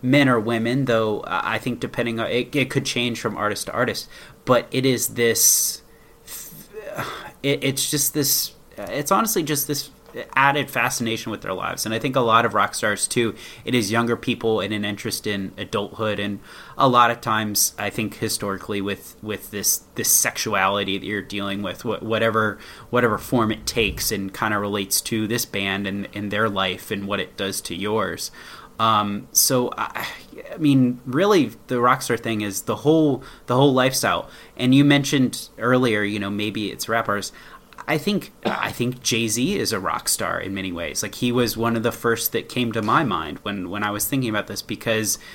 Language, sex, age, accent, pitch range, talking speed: English, male, 20-39, American, 105-125 Hz, 195 wpm